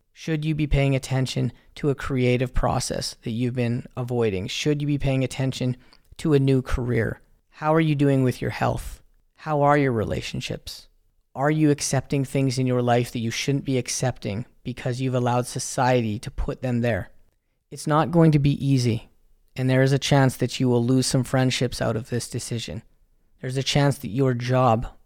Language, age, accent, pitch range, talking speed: English, 30-49, American, 120-135 Hz, 190 wpm